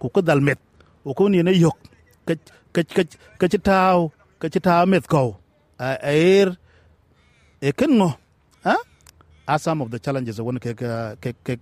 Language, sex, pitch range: English, male, 110-170 Hz